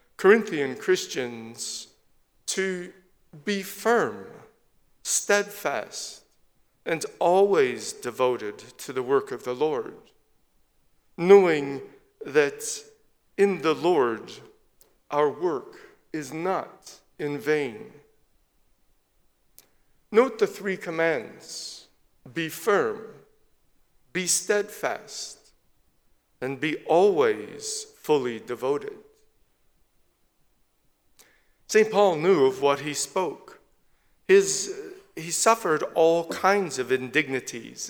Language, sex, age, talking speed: English, male, 50-69, 80 wpm